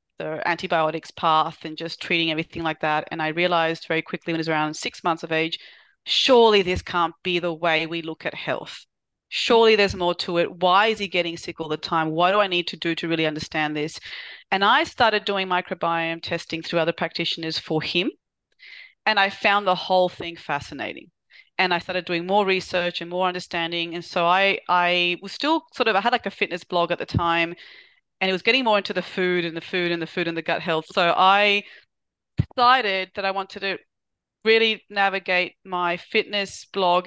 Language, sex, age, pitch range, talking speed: English, female, 30-49, 165-195 Hz, 210 wpm